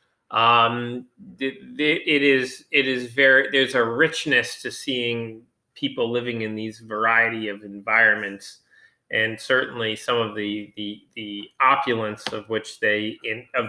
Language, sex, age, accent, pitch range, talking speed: English, male, 30-49, American, 110-155 Hz, 140 wpm